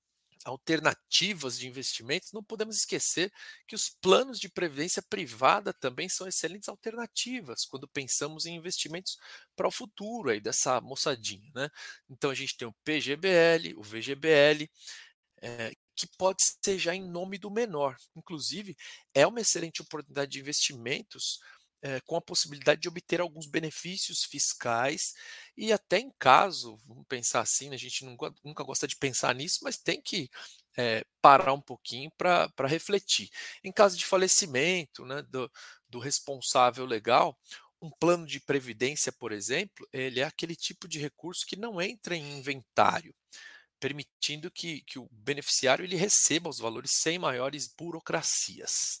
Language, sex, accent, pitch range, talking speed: Portuguese, male, Brazilian, 135-190 Hz, 145 wpm